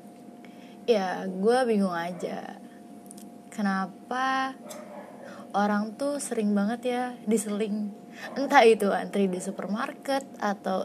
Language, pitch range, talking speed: Indonesian, 190-240 Hz, 95 wpm